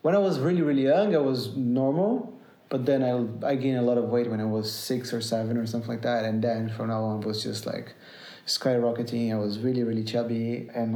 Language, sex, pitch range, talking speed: English, male, 110-125 Hz, 240 wpm